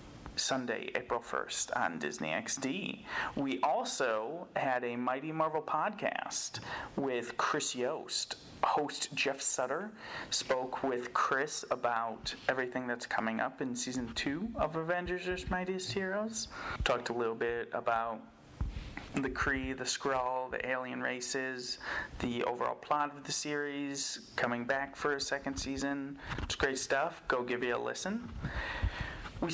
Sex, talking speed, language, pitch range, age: male, 135 wpm, English, 120-145 Hz, 30-49